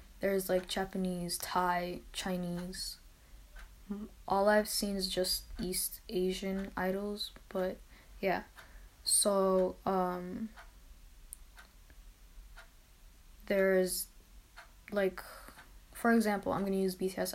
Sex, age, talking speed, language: female, 10-29, 85 wpm, English